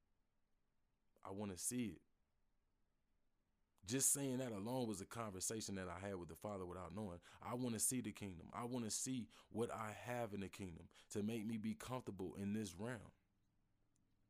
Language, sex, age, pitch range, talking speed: English, male, 20-39, 100-120 Hz, 185 wpm